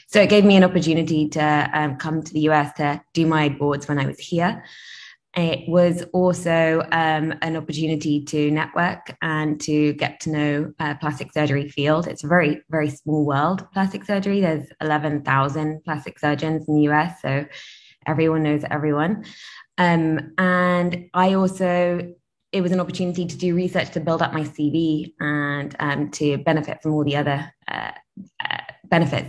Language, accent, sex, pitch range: English, British, female, 150-170 Hz